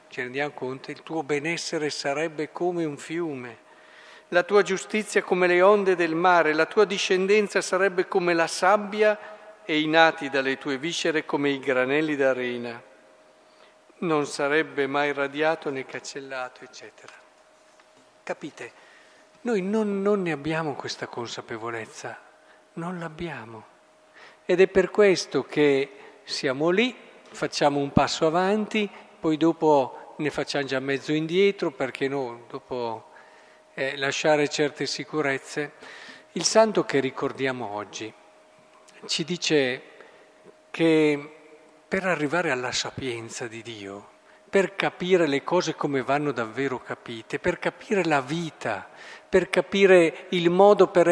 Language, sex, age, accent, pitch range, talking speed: Italian, male, 50-69, native, 140-185 Hz, 125 wpm